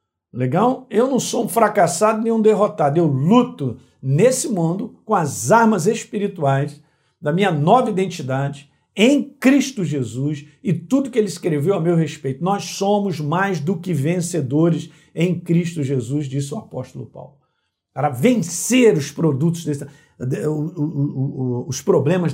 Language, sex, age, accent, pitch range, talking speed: Portuguese, male, 50-69, Brazilian, 160-230 Hz, 140 wpm